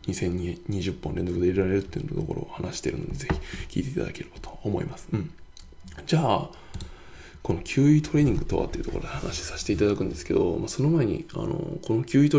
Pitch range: 95-135 Hz